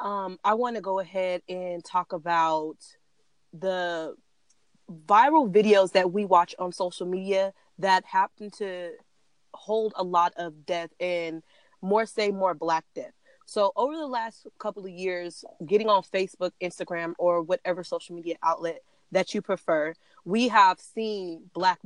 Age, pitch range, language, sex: 20-39, 170-205 Hz, English, female